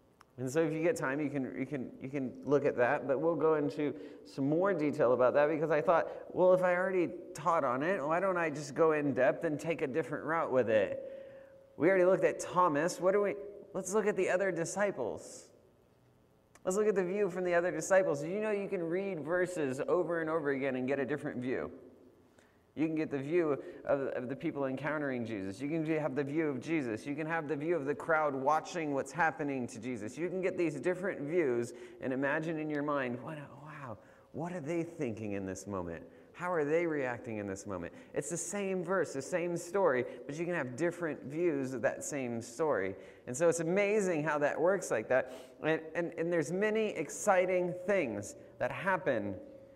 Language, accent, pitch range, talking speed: English, American, 140-180 Hz, 215 wpm